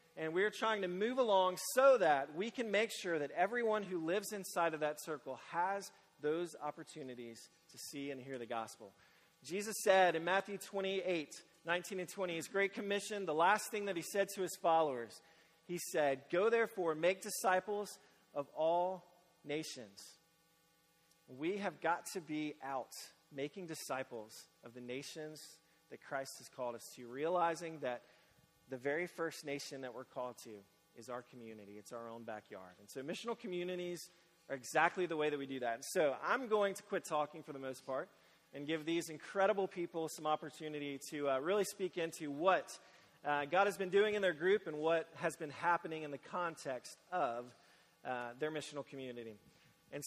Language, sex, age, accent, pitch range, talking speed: English, male, 40-59, American, 145-185 Hz, 180 wpm